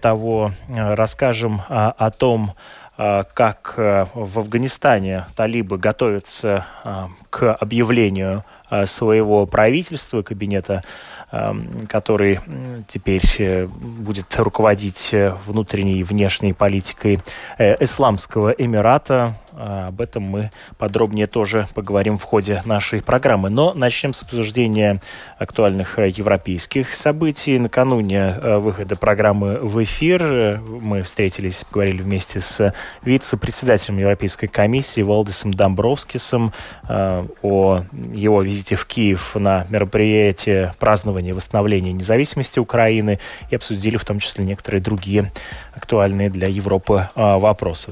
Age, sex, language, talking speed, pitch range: 20-39, male, Russian, 100 wpm, 100-115 Hz